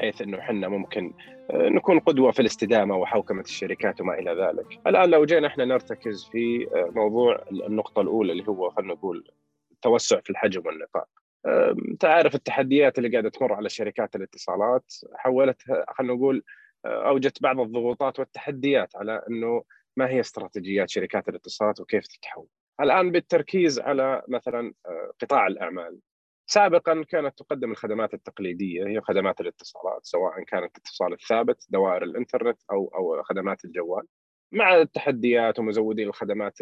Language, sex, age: Arabic, male, 30-49